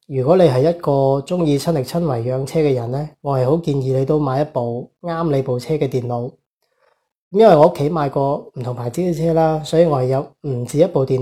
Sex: male